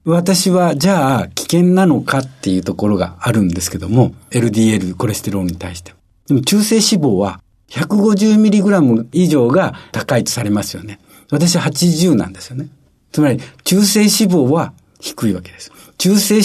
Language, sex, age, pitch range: Japanese, male, 60-79, 110-180 Hz